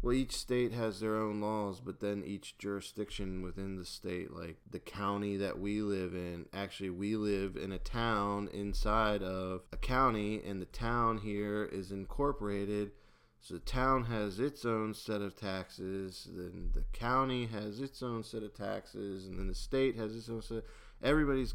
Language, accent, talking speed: English, American, 180 wpm